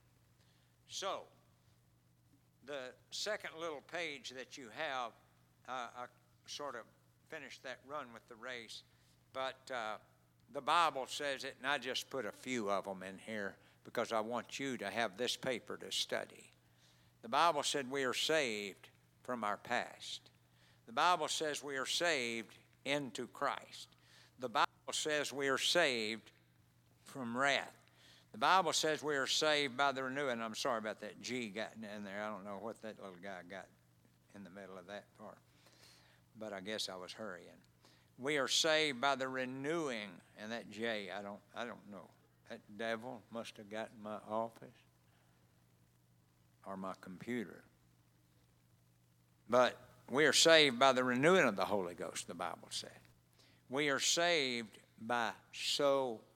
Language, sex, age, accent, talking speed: English, male, 60-79, American, 160 wpm